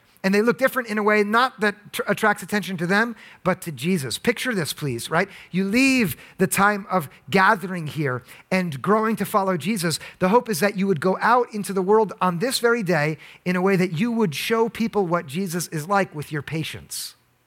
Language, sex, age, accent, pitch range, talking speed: English, male, 40-59, American, 165-210 Hz, 215 wpm